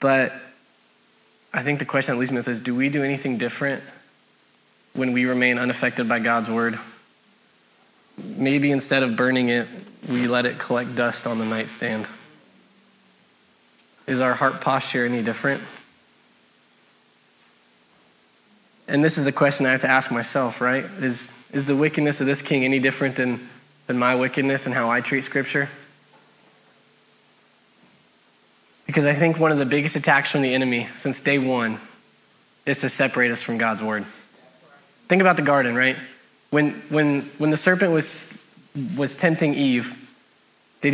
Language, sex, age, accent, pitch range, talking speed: English, male, 20-39, American, 125-165 Hz, 155 wpm